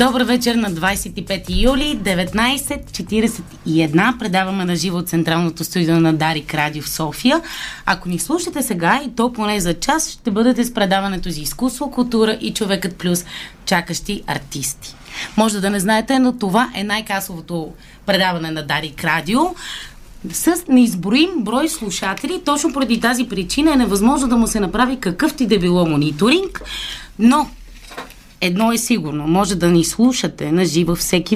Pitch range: 170-245 Hz